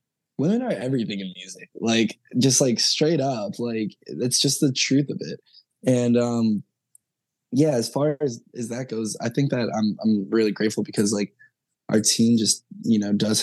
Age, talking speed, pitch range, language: 10-29, 185 wpm, 105-120 Hz, English